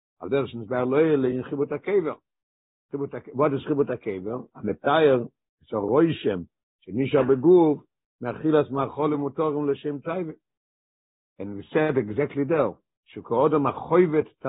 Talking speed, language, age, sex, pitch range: 60 wpm, English, 60-79, male, 120-150 Hz